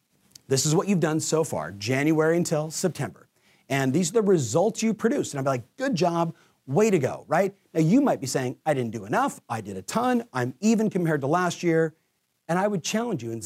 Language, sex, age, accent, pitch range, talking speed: English, male, 40-59, American, 130-180 Hz, 225 wpm